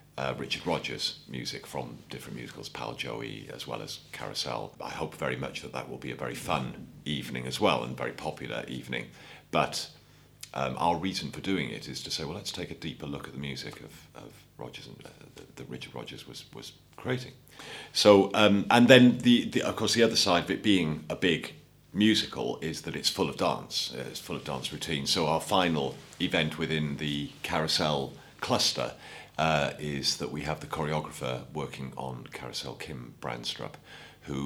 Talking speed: 195 wpm